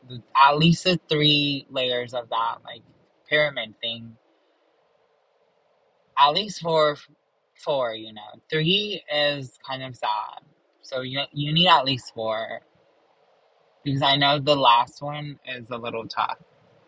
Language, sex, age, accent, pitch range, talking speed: English, male, 20-39, American, 130-160 Hz, 135 wpm